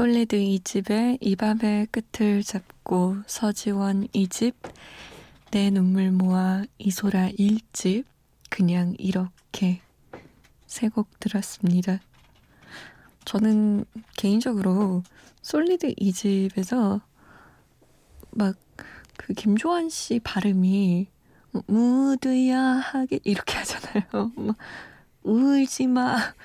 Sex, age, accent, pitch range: female, 20-39, native, 195-255 Hz